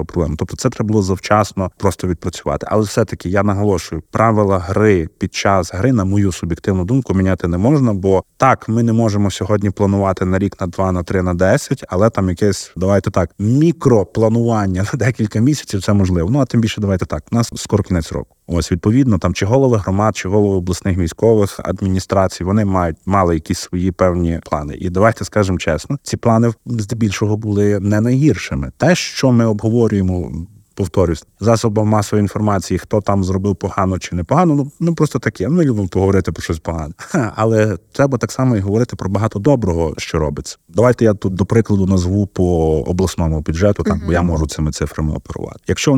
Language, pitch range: Ukrainian, 90-110 Hz